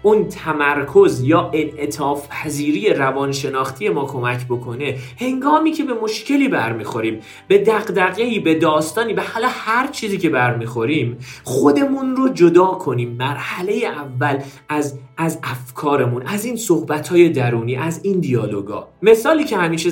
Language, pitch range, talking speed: Persian, 125-205 Hz, 125 wpm